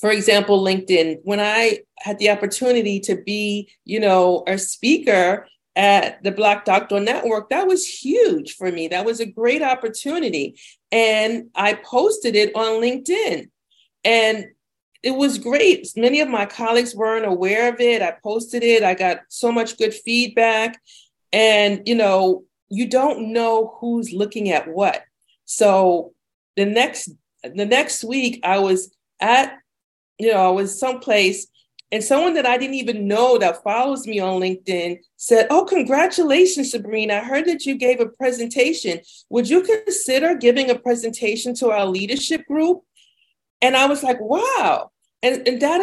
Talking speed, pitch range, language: 155 wpm, 205-265 Hz, English